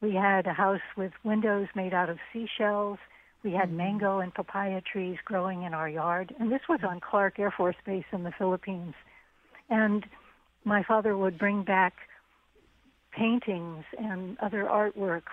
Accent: American